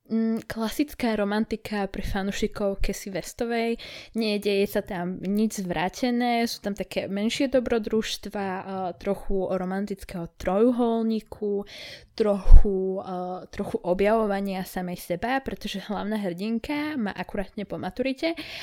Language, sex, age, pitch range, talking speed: Slovak, female, 20-39, 185-225 Hz, 100 wpm